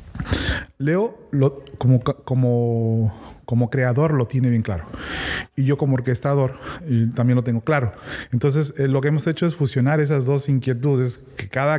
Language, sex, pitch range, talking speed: Spanish, male, 120-140 Hz, 160 wpm